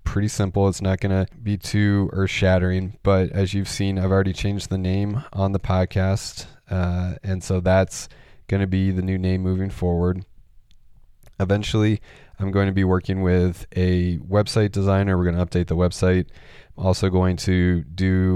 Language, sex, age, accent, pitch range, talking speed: English, male, 20-39, American, 90-100 Hz, 180 wpm